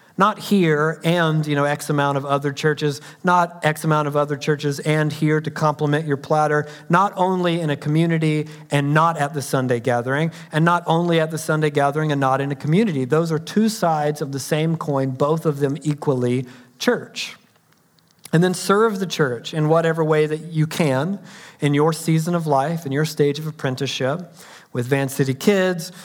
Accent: American